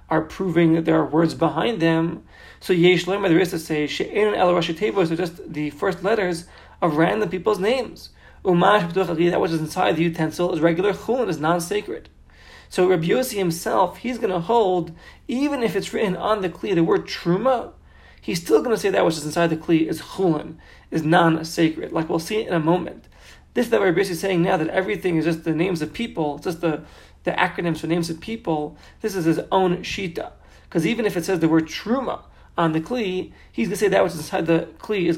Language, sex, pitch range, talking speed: English, male, 160-195 Hz, 220 wpm